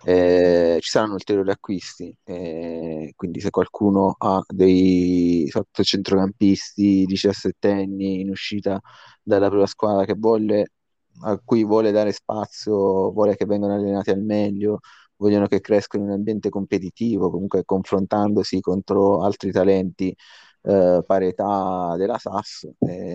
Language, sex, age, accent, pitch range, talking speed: Italian, male, 20-39, native, 90-100 Hz, 125 wpm